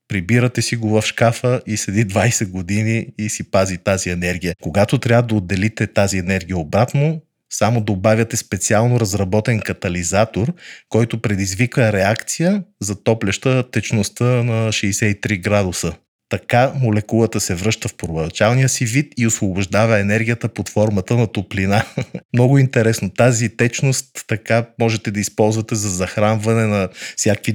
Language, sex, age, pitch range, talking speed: Bulgarian, male, 30-49, 100-115 Hz, 135 wpm